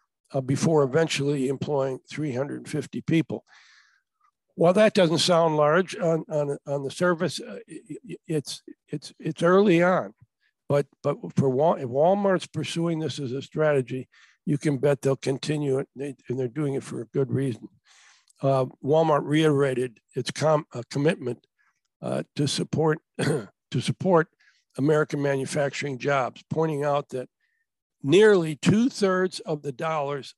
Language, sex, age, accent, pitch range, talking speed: English, male, 60-79, American, 135-170 Hz, 145 wpm